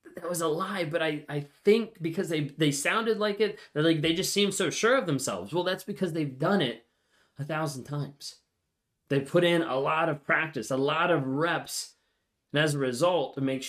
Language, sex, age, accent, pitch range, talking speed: English, male, 20-39, American, 130-170 Hz, 210 wpm